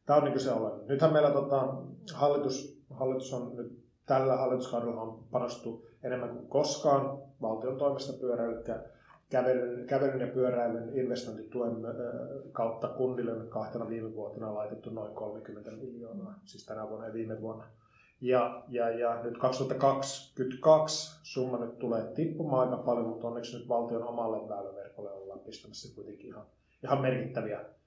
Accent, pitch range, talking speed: native, 115-135 Hz, 145 wpm